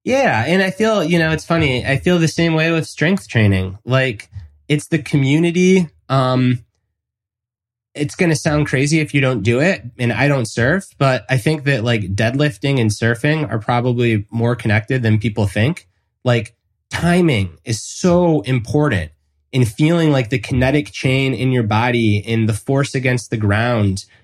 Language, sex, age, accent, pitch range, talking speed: English, male, 20-39, American, 110-145 Hz, 175 wpm